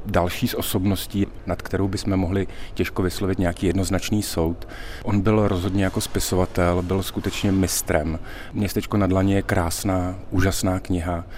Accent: native